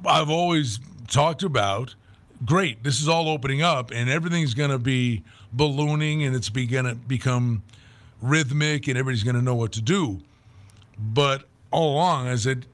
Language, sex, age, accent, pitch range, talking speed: English, male, 50-69, American, 115-165 Hz, 165 wpm